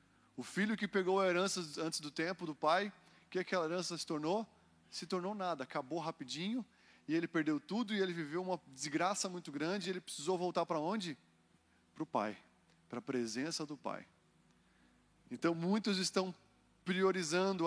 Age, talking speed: 20-39, 175 wpm